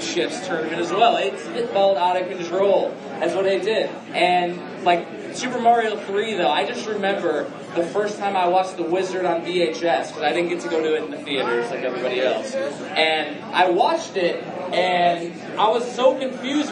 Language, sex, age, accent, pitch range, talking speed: English, male, 20-39, American, 175-240 Hz, 195 wpm